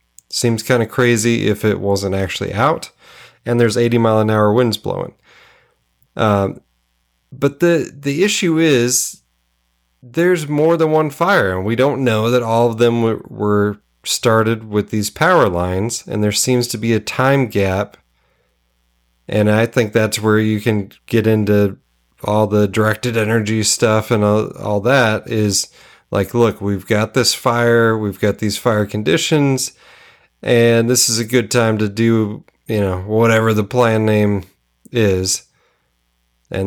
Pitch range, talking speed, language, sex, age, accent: 100-120 Hz, 160 wpm, English, male, 30-49, American